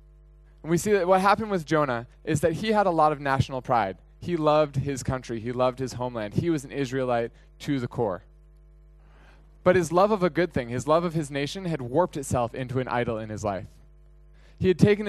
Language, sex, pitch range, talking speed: English, male, 125-160 Hz, 225 wpm